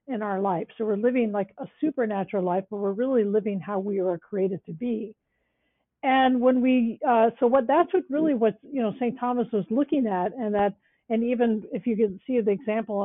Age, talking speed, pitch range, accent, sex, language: 50-69, 215 wpm, 195-235 Hz, American, female, English